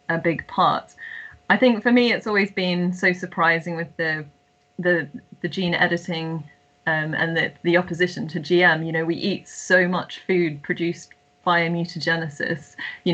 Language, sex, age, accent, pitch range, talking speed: English, female, 20-39, British, 165-180 Hz, 165 wpm